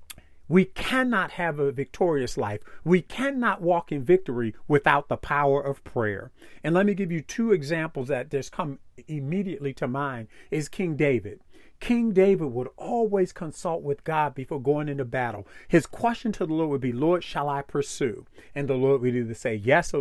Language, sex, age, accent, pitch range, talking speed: English, male, 50-69, American, 135-180 Hz, 185 wpm